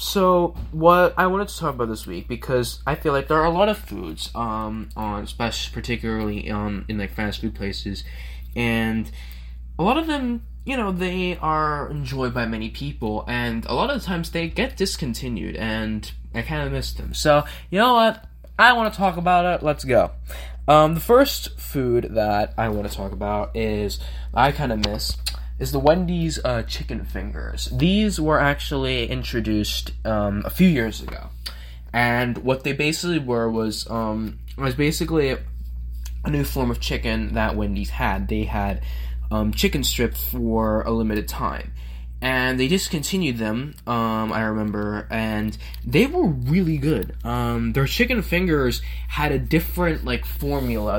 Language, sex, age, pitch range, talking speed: English, male, 10-29, 100-150 Hz, 170 wpm